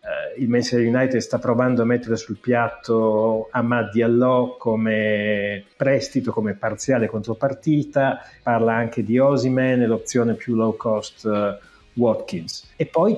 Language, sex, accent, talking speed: Italian, male, native, 130 wpm